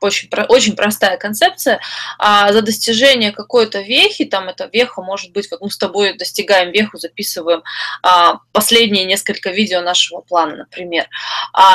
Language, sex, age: Russian, female, 20-39